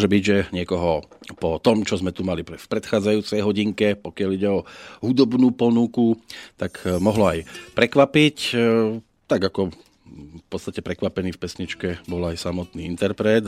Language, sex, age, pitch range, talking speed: Slovak, male, 40-59, 95-115 Hz, 140 wpm